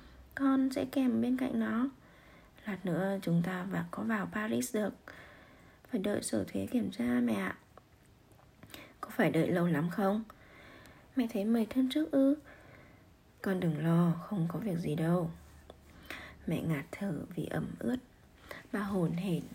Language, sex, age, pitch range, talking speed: Vietnamese, female, 20-39, 175-245 Hz, 160 wpm